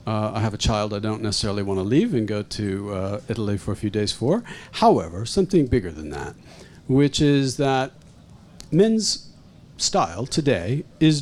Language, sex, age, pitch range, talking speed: English, male, 50-69, 125-175 Hz, 175 wpm